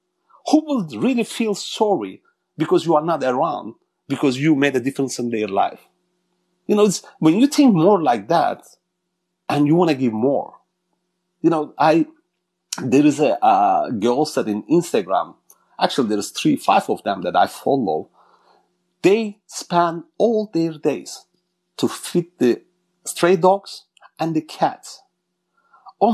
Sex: male